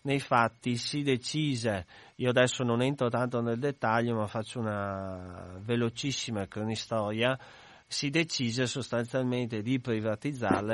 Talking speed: 115 wpm